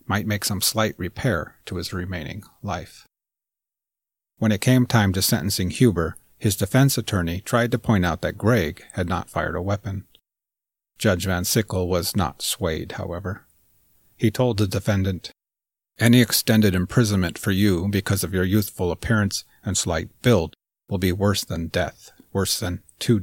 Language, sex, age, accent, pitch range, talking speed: English, male, 40-59, American, 90-110 Hz, 160 wpm